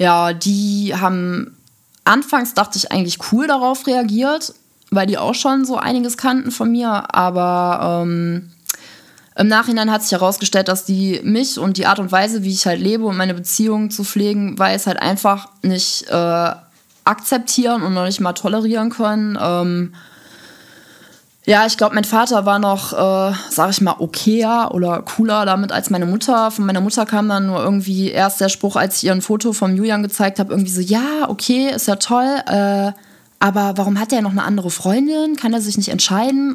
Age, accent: 20-39, German